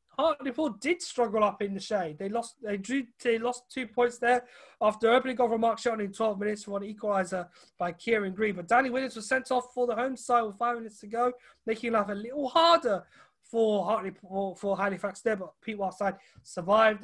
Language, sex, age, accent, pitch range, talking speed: English, male, 20-39, British, 195-245 Hz, 210 wpm